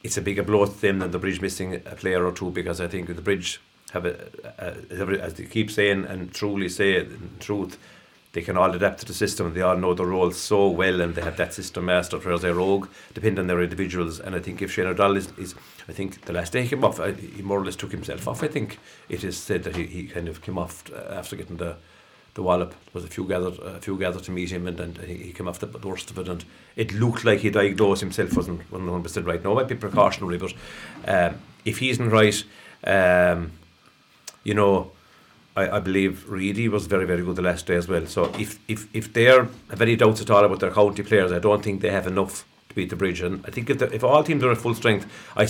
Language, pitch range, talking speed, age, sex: English, 90-105 Hz, 260 wpm, 50-69, male